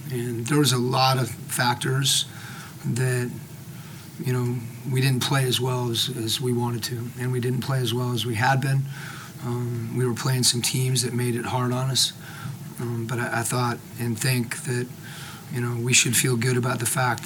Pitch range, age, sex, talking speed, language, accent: 120-140 Hz, 40-59, male, 205 wpm, English, American